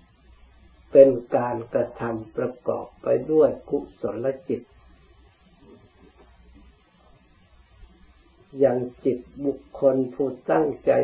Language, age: Thai, 60-79